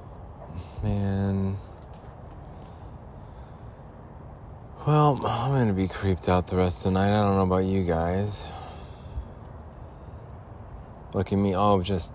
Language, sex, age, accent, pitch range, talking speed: English, male, 30-49, American, 85-115 Hz, 110 wpm